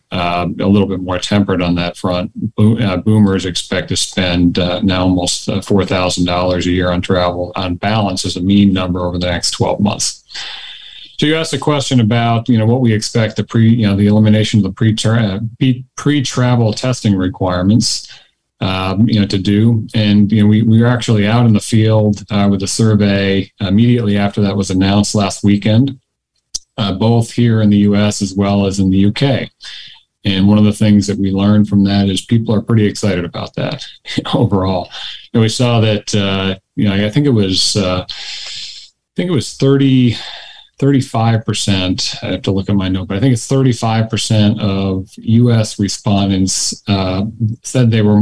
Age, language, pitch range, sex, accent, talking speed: 40-59, English, 95-115 Hz, male, American, 195 wpm